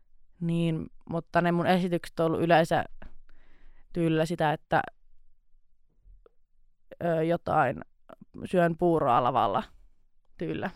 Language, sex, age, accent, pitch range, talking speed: Finnish, female, 20-39, native, 165-185 Hz, 90 wpm